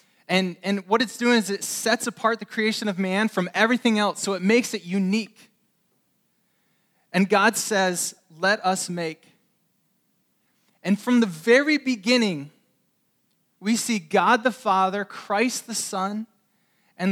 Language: English